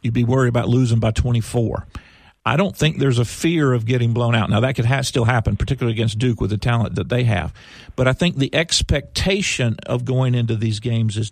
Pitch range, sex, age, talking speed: 115-140 Hz, male, 50-69, 225 wpm